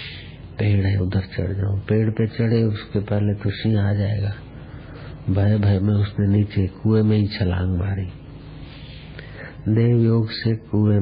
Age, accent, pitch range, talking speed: 50-69, native, 95-105 Hz, 140 wpm